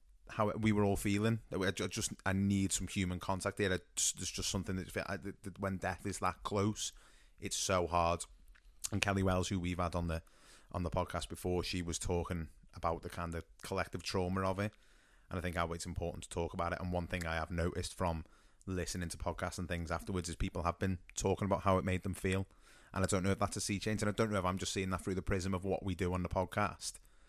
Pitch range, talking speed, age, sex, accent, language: 90-100 Hz, 240 wpm, 30-49, male, British, English